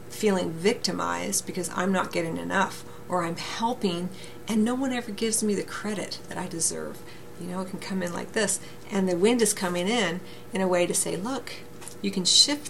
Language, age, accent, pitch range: English, 40-59, American, 175-205 Hz